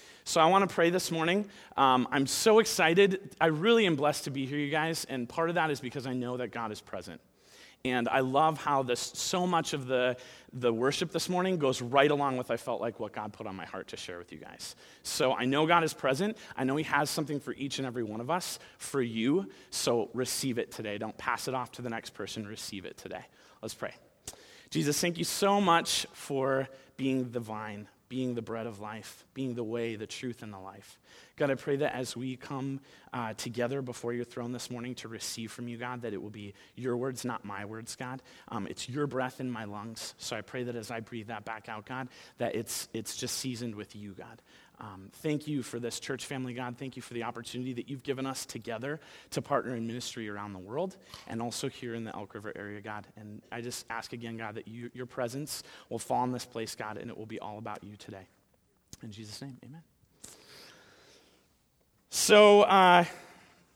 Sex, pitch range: male, 115-140 Hz